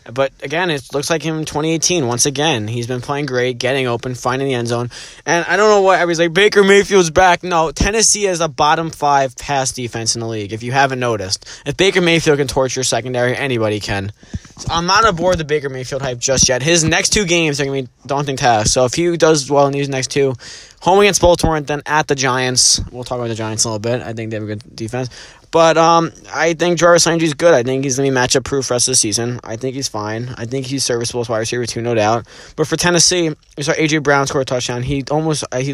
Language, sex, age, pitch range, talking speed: English, male, 20-39, 115-155 Hz, 250 wpm